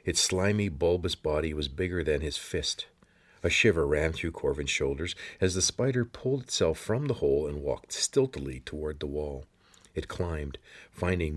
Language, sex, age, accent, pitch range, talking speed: English, male, 50-69, American, 80-110 Hz, 170 wpm